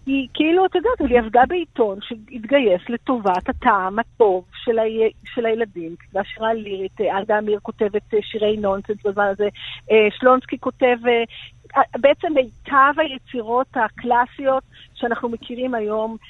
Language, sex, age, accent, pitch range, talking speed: Hebrew, female, 50-69, native, 205-265 Hz, 120 wpm